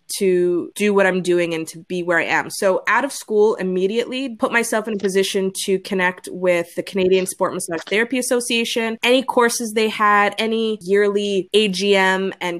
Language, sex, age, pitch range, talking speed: English, female, 20-39, 180-220 Hz, 180 wpm